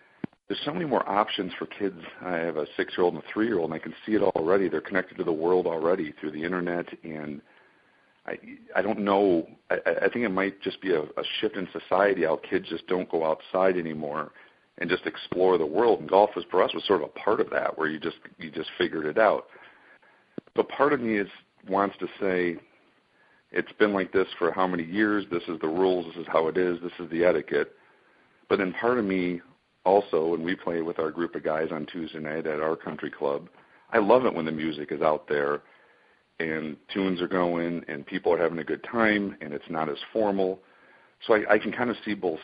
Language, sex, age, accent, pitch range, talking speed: English, male, 50-69, American, 85-95 Hz, 230 wpm